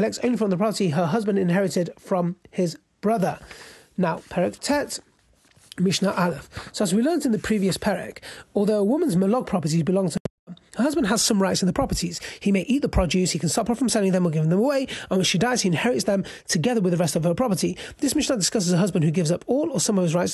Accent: British